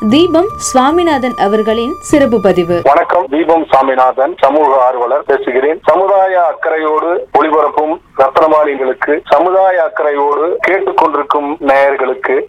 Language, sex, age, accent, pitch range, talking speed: Tamil, male, 30-49, native, 140-195 Hz, 85 wpm